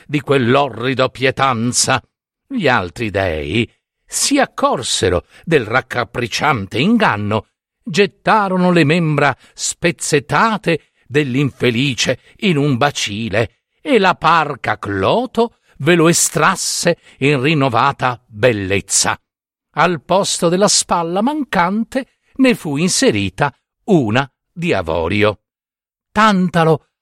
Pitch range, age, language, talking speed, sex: 120-175 Hz, 50-69, Italian, 90 wpm, male